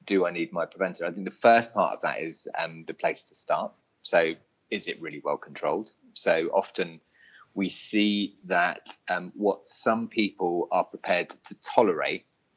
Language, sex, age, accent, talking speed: English, male, 30-49, British, 175 wpm